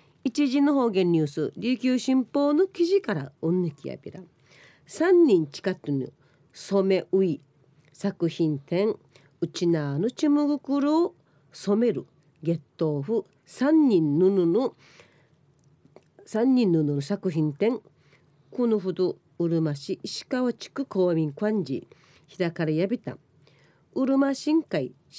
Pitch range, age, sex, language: 150-245 Hz, 40-59, female, Japanese